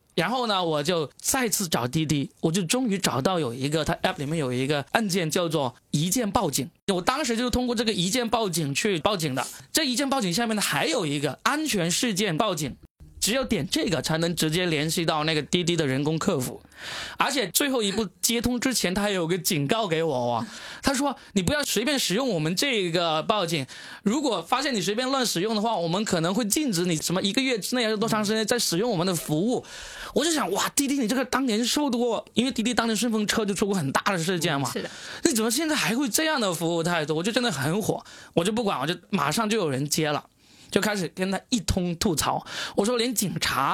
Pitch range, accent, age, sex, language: 160-240 Hz, native, 20-39, male, Chinese